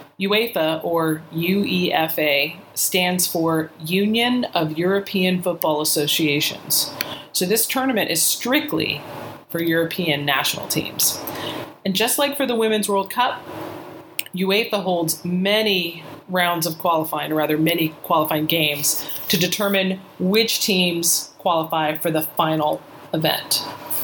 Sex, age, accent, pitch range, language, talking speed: female, 30-49, American, 160-200 Hz, English, 115 wpm